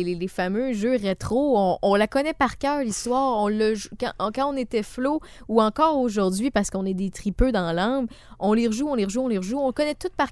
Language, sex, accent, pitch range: French, female, Canadian, 205-270 Hz